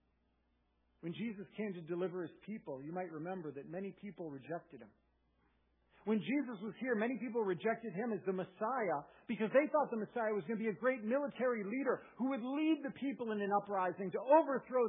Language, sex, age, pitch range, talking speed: English, male, 50-69, 155-230 Hz, 200 wpm